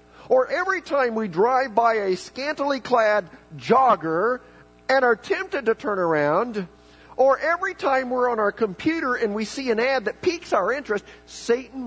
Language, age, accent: English, 50-69, American